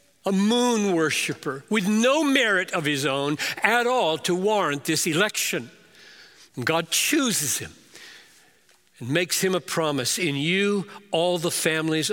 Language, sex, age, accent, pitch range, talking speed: English, male, 60-79, American, 130-200 Hz, 145 wpm